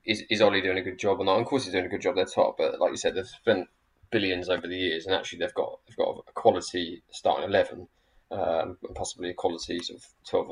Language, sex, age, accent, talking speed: English, male, 20-39, British, 260 wpm